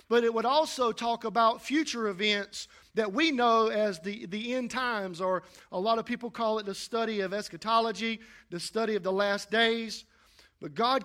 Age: 50-69